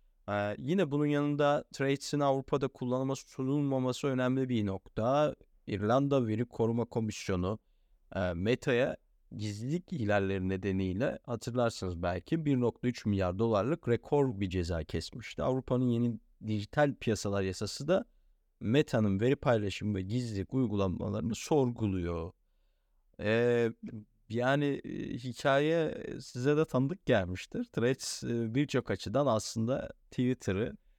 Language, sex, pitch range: Turkish, male, 105-130 Hz